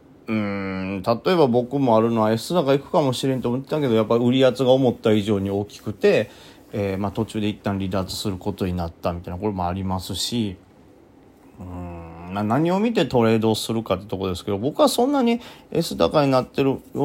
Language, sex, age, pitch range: Japanese, male, 30-49, 105-140 Hz